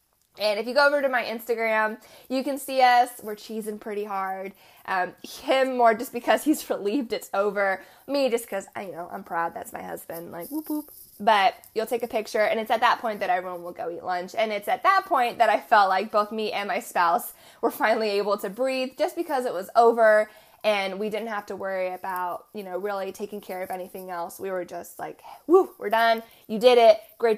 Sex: female